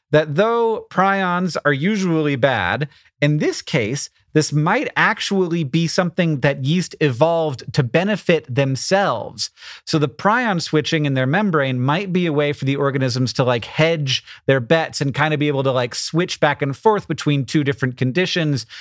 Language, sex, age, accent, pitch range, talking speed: English, male, 30-49, American, 130-165 Hz, 170 wpm